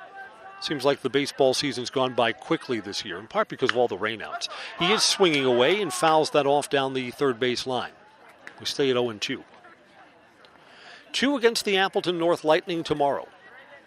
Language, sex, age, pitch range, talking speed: English, male, 50-69, 135-200 Hz, 175 wpm